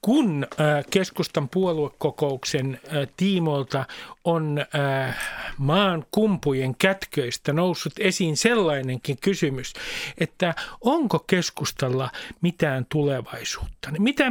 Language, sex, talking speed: Finnish, male, 75 wpm